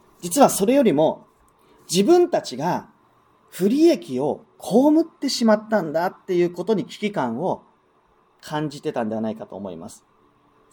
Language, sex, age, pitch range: Japanese, male, 30-49, 165-255 Hz